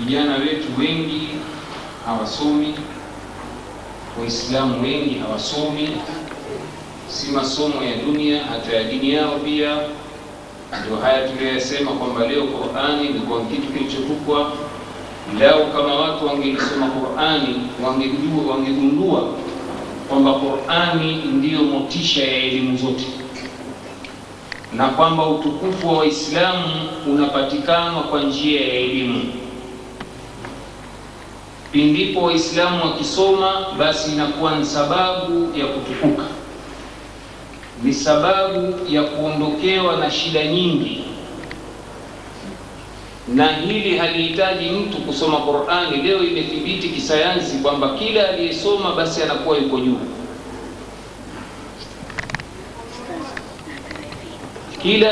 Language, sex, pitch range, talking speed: Swahili, male, 135-165 Hz, 90 wpm